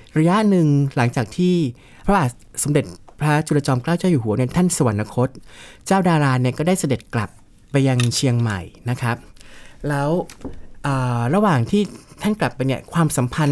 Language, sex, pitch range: Thai, male, 120-155 Hz